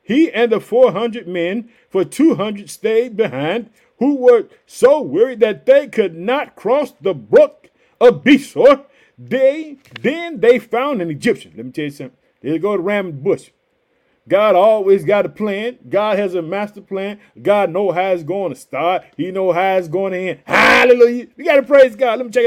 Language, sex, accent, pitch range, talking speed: English, male, American, 190-275 Hz, 190 wpm